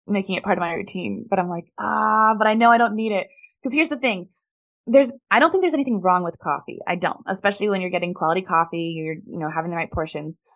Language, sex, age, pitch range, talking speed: English, female, 20-39, 175-230 Hz, 255 wpm